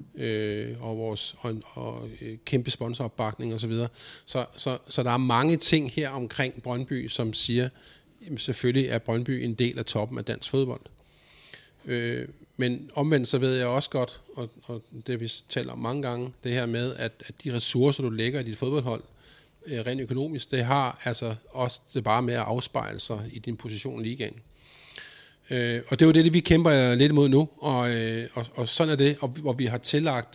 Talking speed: 185 wpm